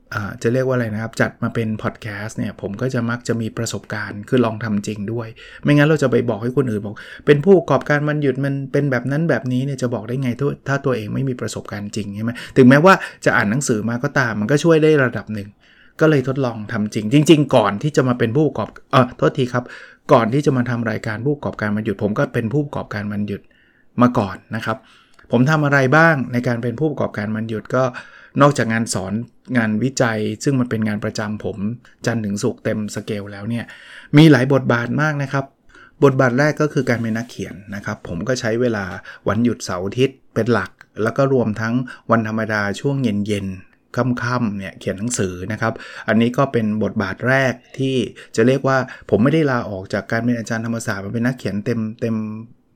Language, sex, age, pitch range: English, male, 20-39, 110-135 Hz